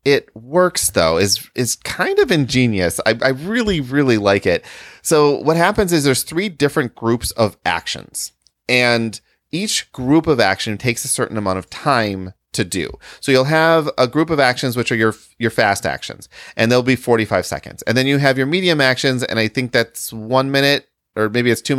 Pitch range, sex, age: 110-145 Hz, male, 30-49